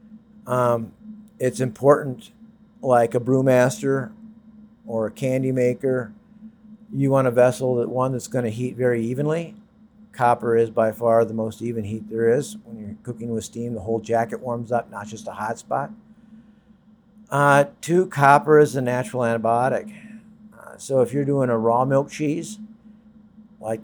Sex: male